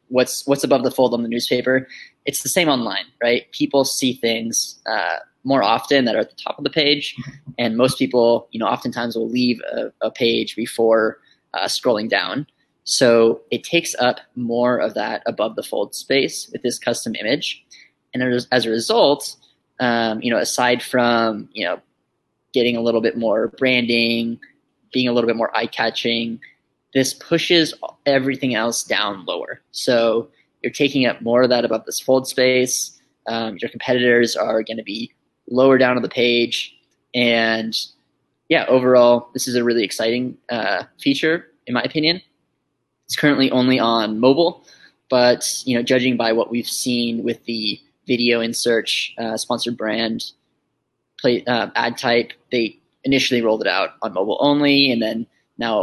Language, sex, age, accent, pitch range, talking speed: English, male, 10-29, American, 115-130 Hz, 170 wpm